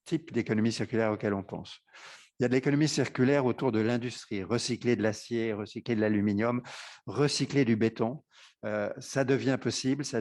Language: French